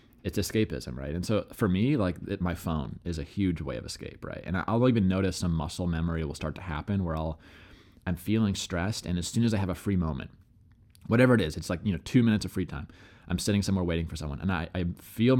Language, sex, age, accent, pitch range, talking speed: English, male, 20-39, American, 85-105 Hz, 255 wpm